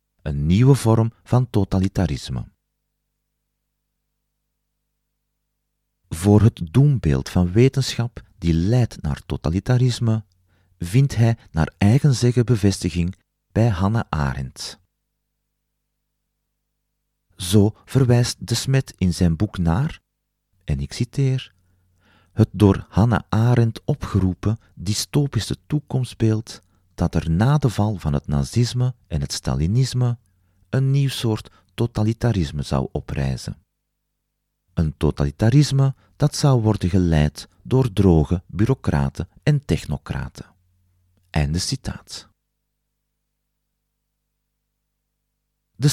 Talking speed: 95 wpm